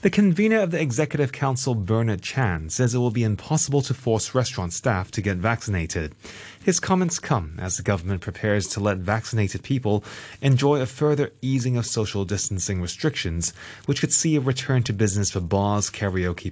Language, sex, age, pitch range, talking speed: English, male, 30-49, 95-125 Hz, 180 wpm